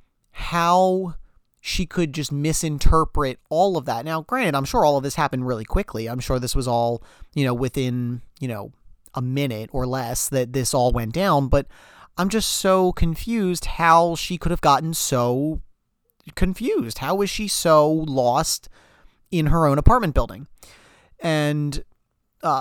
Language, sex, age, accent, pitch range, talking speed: English, male, 30-49, American, 125-160 Hz, 160 wpm